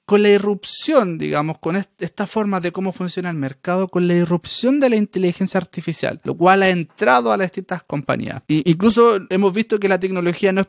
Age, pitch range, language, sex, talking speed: 30-49, 155-190 Hz, Spanish, male, 200 wpm